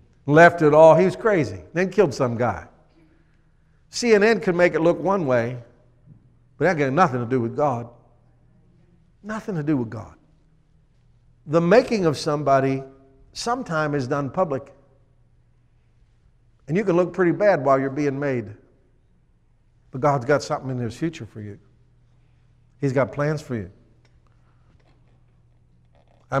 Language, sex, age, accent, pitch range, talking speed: English, male, 60-79, American, 120-155 Hz, 145 wpm